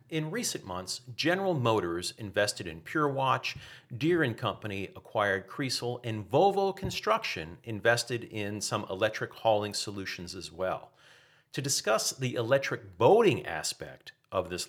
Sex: male